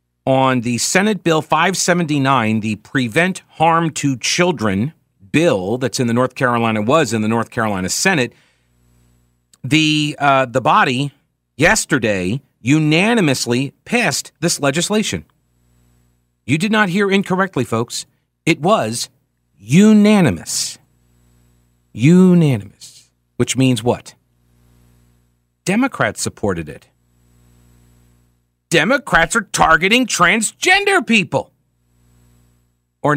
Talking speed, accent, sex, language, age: 95 wpm, American, male, English, 40-59